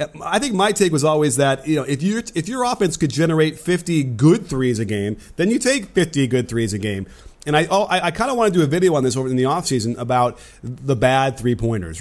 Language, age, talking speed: English, 30-49, 260 wpm